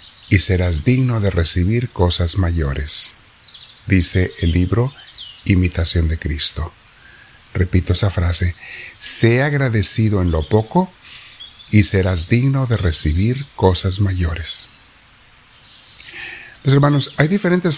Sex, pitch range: male, 90-120 Hz